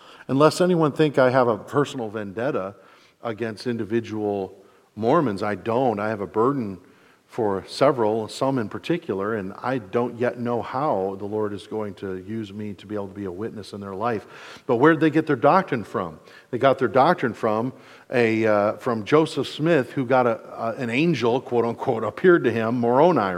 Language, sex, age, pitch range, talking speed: English, male, 50-69, 115-145 Hz, 200 wpm